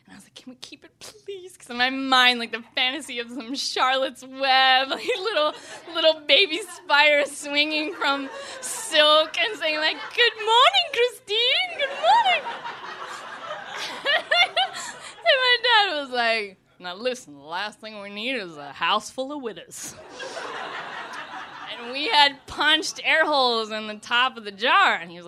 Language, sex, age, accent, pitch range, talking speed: English, female, 10-29, American, 190-285 Hz, 165 wpm